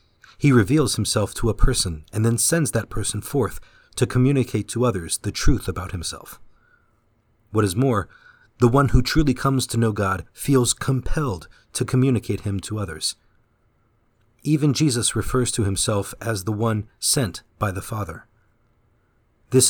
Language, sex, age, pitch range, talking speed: English, male, 40-59, 100-125 Hz, 155 wpm